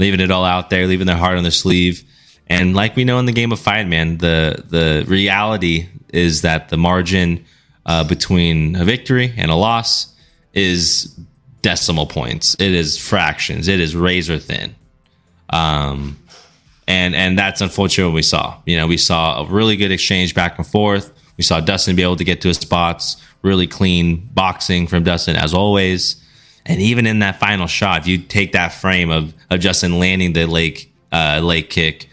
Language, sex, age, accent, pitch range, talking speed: English, male, 20-39, American, 85-100 Hz, 190 wpm